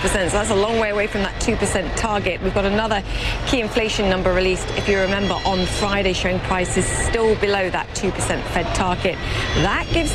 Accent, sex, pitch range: British, female, 185-220 Hz